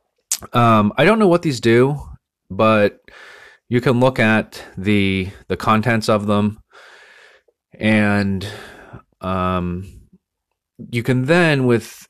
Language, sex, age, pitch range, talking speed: English, male, 30-49, 90-115 Hz, 115 wpm